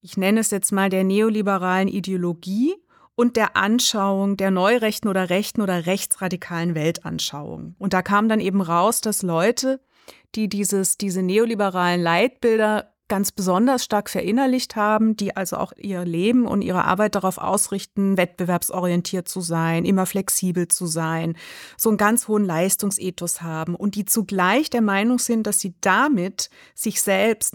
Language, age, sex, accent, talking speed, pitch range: German, 30-49, female, German, 150 wpm, 185-220 Hz